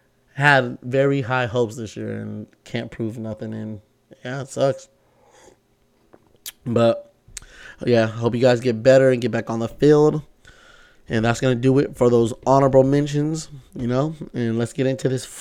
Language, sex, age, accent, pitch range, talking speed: English, male, 20-39, American, 110-140 Hz, 170 wpm